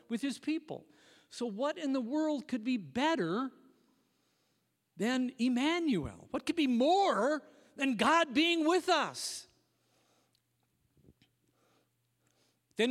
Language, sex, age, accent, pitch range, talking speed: English, male, 50-69, American, 210-300 Hz, 105 wpm